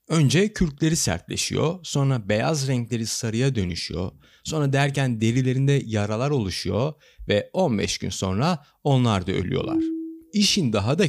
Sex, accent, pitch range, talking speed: male, native, 115-185 Hz, 125 wpm